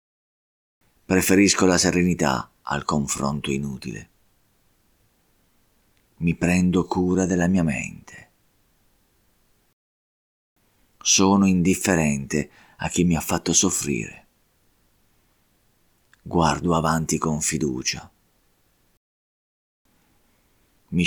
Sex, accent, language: male, native, Italian